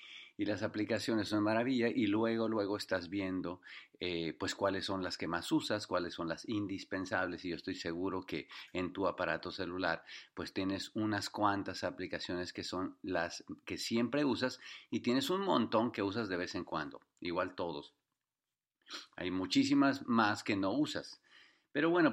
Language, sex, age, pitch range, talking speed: English, male, 40-59, 95-115 Hz, 170 wpm